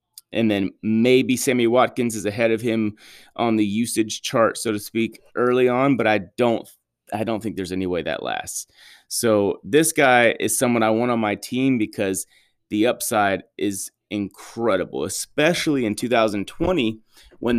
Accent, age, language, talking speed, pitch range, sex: American, 30-49, English, 165 wpm, 105-130 Hz, male